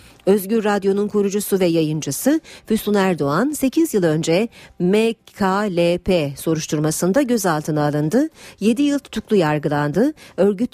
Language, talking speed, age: Turkish, 105 wpm, 50-69